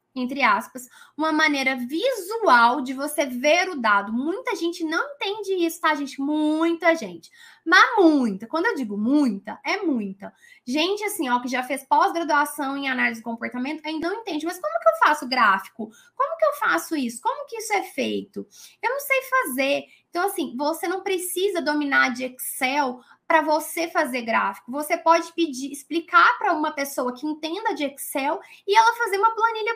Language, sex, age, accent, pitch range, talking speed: Portuguese, female, 10-29, Brazilian, 275-390 Hz, 180 wpm